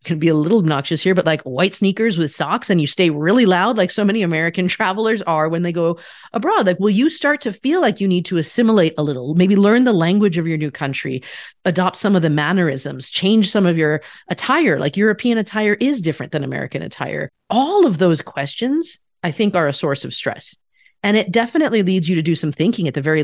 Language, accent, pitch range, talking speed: English, American, 155-210 Hz, 230 wpm